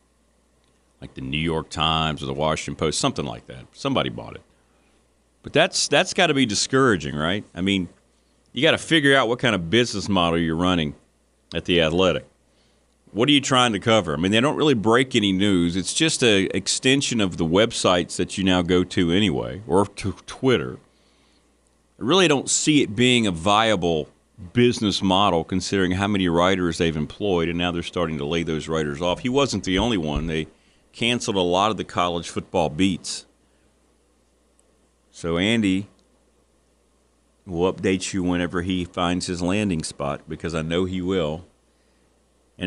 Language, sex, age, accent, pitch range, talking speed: English, male, 40-59, American, 85-110 Hz, 175 wpm